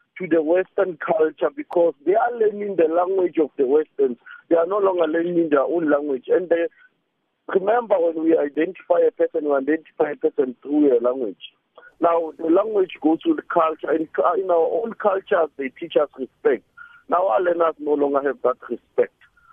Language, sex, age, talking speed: English, male, 50-69, 180 wpm